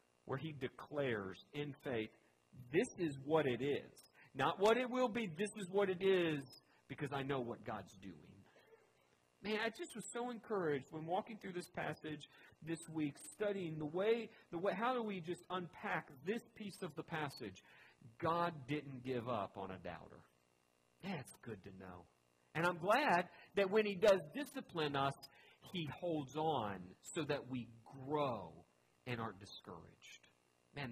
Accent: American